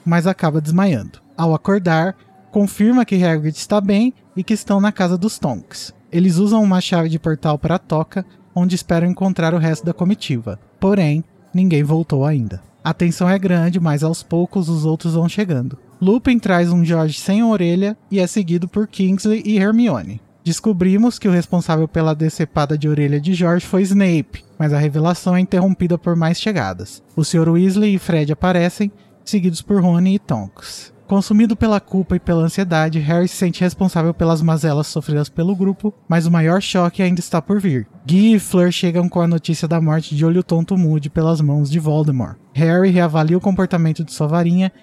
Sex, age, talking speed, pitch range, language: male, 20-39, 185 wpm, 155-190 Hz, Portuguese